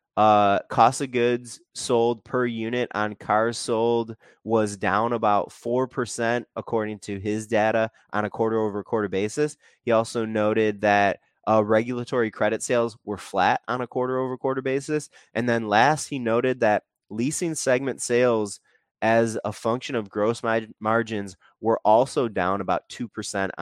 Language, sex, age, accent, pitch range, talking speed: English, male, 20-39, American, 95-120 Hz, 150 wpm